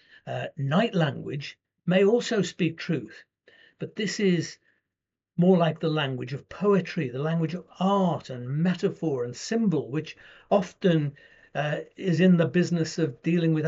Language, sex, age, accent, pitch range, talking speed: English, male, 60-79, British, 145-185 Hz, 150 wpm